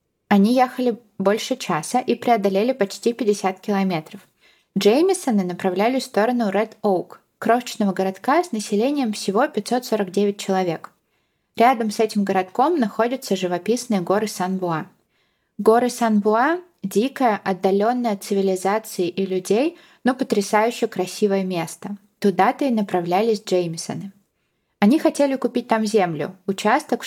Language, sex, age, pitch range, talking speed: Russian, female, 20-39, 195-235 Hz, 120 wpm